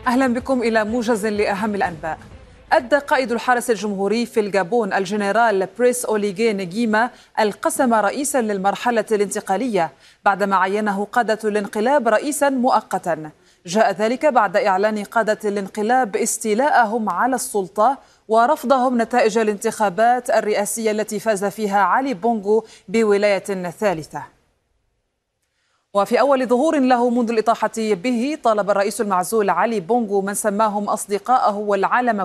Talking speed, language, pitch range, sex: 115 wpm, Arabic, 200-240 Hz, female